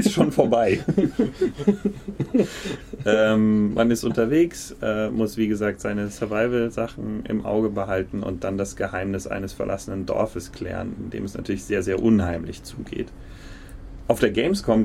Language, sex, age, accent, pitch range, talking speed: German, male, 30-49, German, 95-115 Hz, 140 wpm